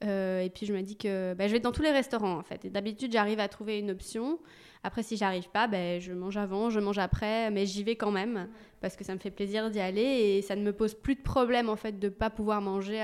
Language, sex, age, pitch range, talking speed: French, female, 20-39, 200-235 Hz, 290 wpm